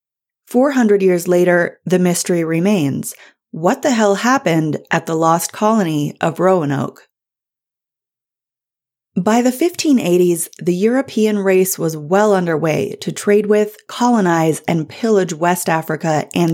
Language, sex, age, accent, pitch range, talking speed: English, female, 30-49, American, 165-220 Hz, 125 wpm